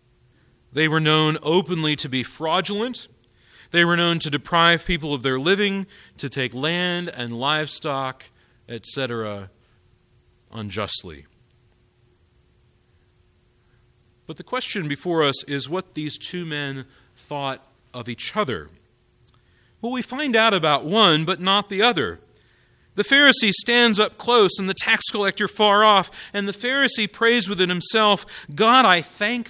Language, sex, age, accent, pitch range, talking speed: English, male, 40-59, American, 120-175 Hz, 135 wpm